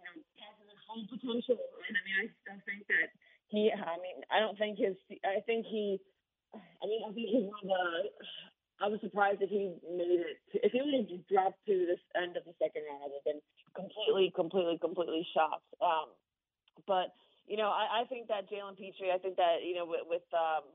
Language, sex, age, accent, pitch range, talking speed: English, female, 30-49, American, 185-225 Hz, 195 wpm